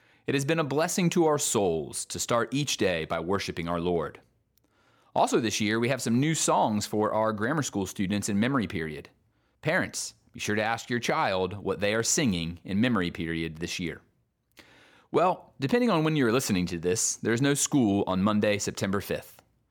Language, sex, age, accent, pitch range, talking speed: English, male, 30-49, American, 95-135 Hz, 190 wpm